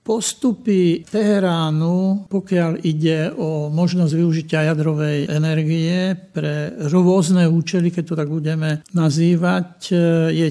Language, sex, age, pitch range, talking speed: Slovak, male, 60-79, 155-180 Hz, 105 wpm